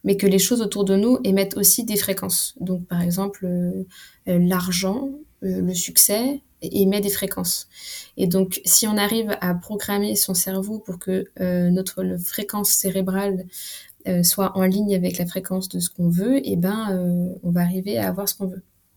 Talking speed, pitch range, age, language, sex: 185 wpm, 175-200 Hz, 20-39, French, female